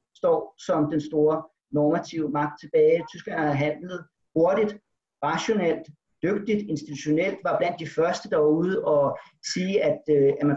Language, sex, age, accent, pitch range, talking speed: Danish, male, 40-59, native, 145-180 Hz, 150 wpm